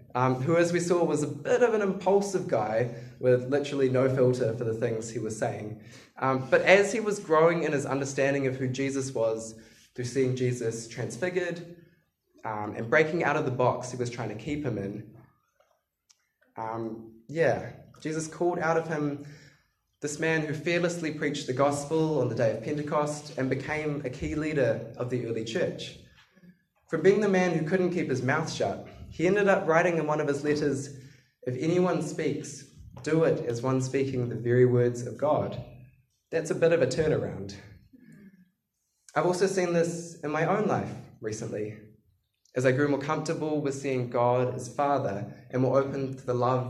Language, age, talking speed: English, 20-39, 185 wpm